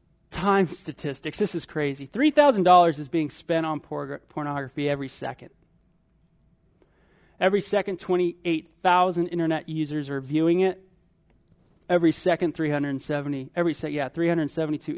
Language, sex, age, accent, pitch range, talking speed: English, male, 30-49, American, 145-175 Hz, 115 wpm